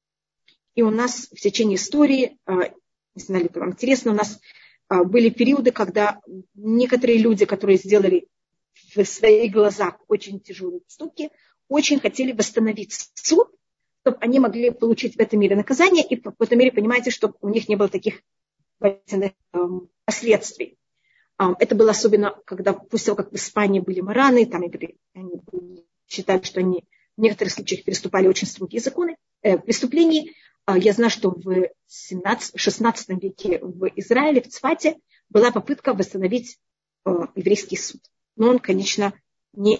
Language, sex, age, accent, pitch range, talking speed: Russian, female, 30-49, native, 195-245 Hz, 140 wpm